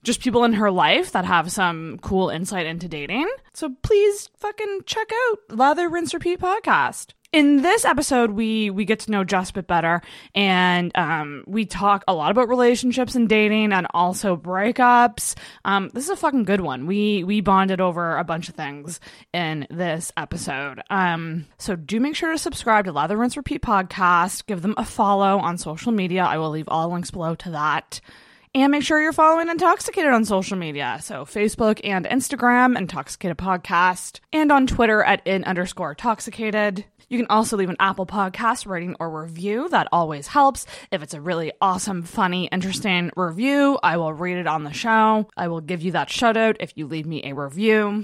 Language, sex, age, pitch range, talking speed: English, female, 20-39, 175-245 Hz, 190 wpm